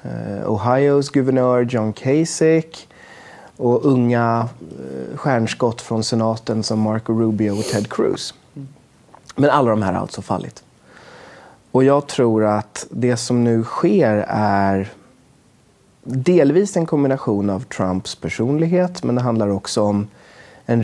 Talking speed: 125 wpm